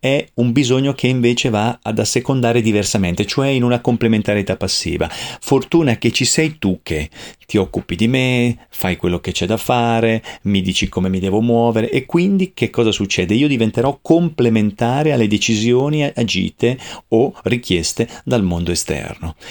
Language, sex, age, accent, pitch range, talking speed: Italian, male, 40-59, native, 95-125 Hz, 160 wpm